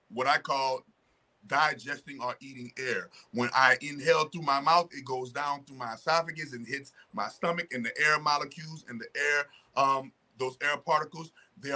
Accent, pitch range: American, 125-155 Hz